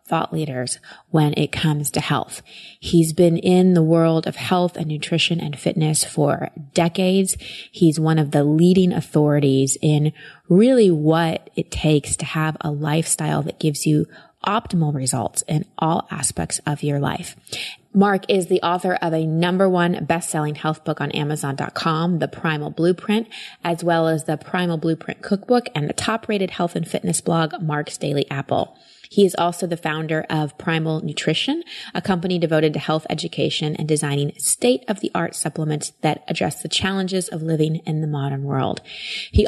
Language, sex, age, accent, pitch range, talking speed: English, female, 20-39, American, 150-180 Hz, 165 wpm